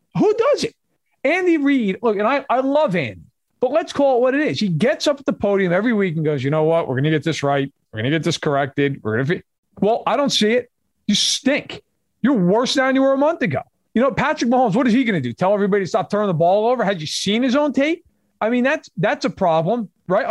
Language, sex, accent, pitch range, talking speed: English, male, American, 170-255 Hz, 265 wpm